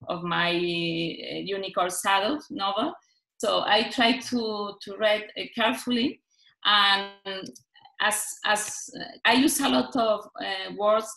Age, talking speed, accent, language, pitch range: 30-49, 120 wpm, Spanish, English, 190-245 Hz